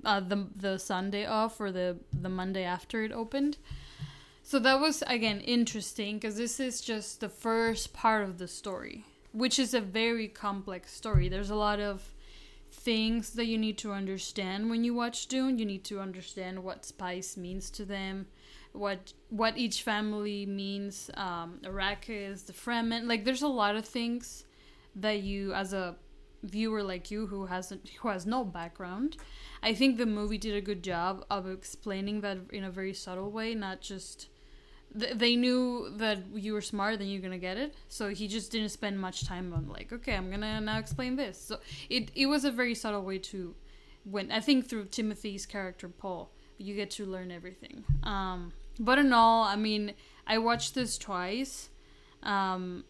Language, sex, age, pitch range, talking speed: English, female, 10-29, 190-230 Hz, 185 wpm